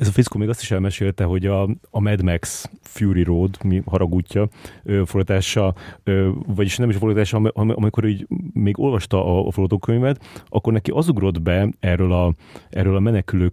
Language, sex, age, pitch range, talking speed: Hungarian, male, 30-49, 95-110 Hz, 170 wpm